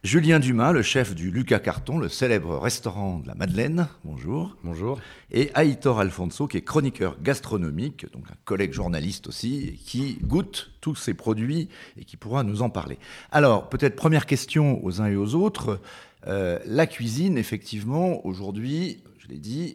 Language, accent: French, French